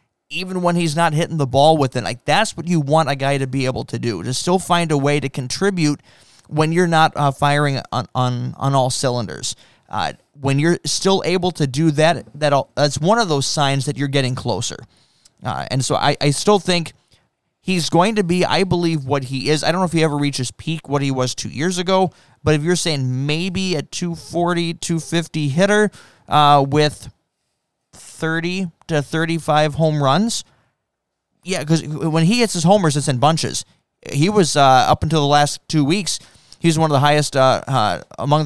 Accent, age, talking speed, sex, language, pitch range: American, 20-39, 200 wpm, male, English, 135-165 Hz